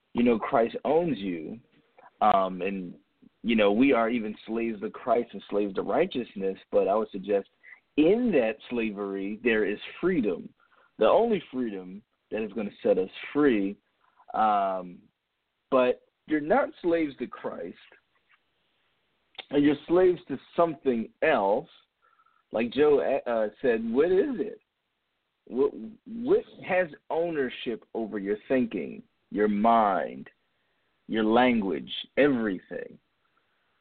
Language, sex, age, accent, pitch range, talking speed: English, male, 40-59, American, 105-175 Hz, 125 wpm